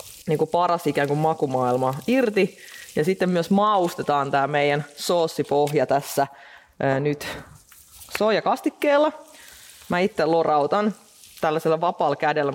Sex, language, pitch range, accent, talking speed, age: female, Finnish, 145-180 Hz, native, 105 wpm, 20-39